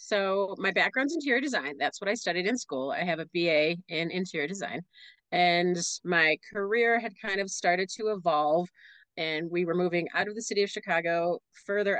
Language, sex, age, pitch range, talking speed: English, female, 30-49, 165-215 Hz, 190 wpm